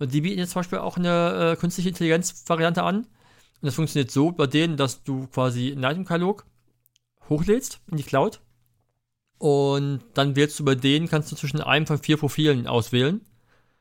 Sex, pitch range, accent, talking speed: male, 130-155 Hz, German, 180 wpm